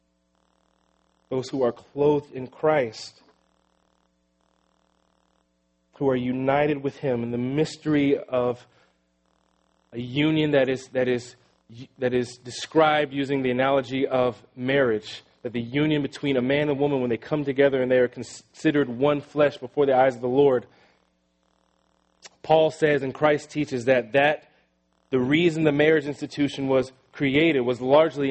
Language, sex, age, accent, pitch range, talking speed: English, male, 30-49, American, 110-145 Hz, 145 wpm